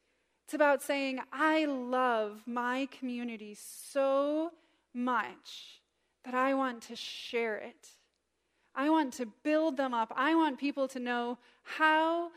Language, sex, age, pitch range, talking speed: English, female, 20-39, 235-300 Hz, 130 wpm